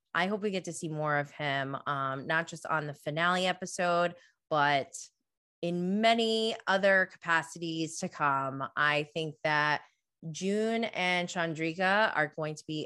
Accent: American